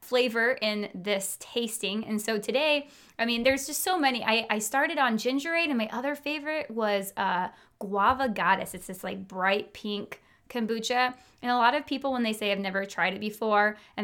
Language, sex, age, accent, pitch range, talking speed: English, female, 20-39, American, 200-265 Hz, 195 wpm